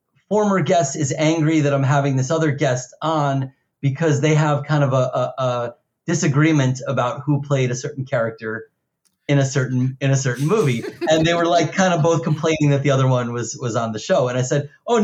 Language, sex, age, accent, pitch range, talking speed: English, male, 30-49, American, 125-155 Hz, 210 wpm